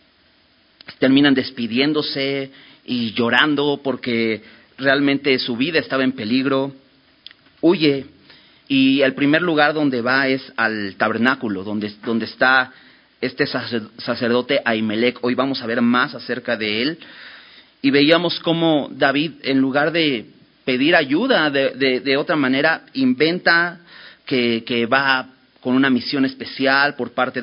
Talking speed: 130 wpm